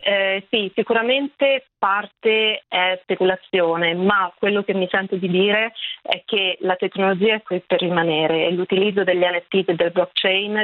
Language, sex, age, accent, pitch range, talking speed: Italian, female, 30-49, native, 180-210 Hz, 160 wpm